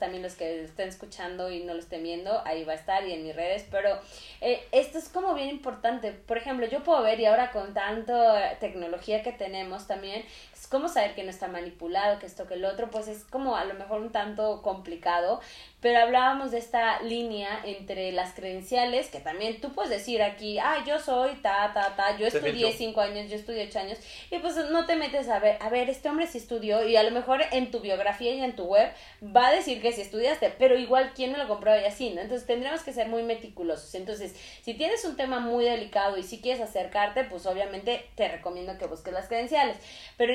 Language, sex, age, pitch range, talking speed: Spanish, female, 20-39, 195-245 Hz, 225 wpm